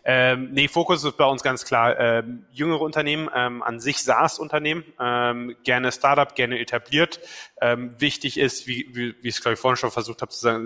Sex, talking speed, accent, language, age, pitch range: male, 205 wpm, German, German, 20-39, 120-140 Hz